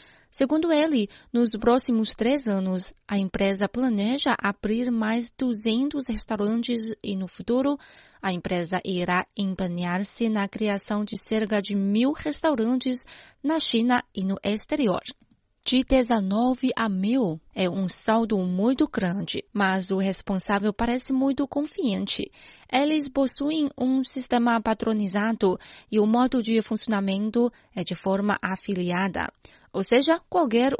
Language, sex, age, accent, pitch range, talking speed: Portuguese, female, 20-39, Brazilian, 200-255 Hz, 125 wpm